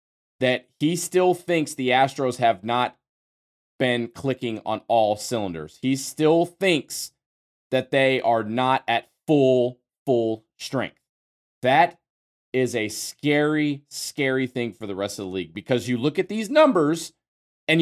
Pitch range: 125-160 Hz